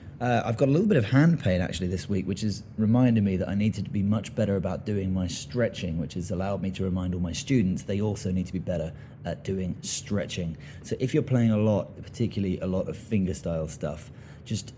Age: 20-39